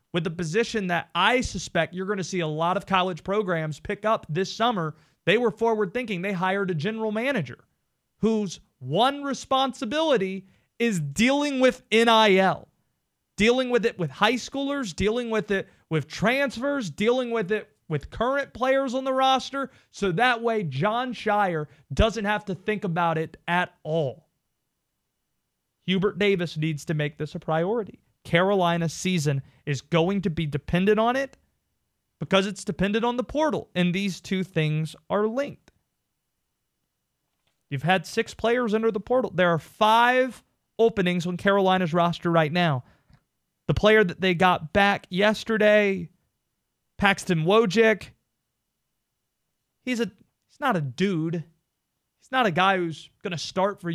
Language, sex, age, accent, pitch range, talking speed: English, male, 30-49, American, 170-225 Hz, 150 wpm